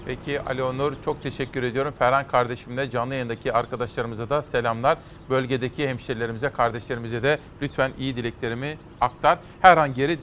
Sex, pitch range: male, 130-160 Hz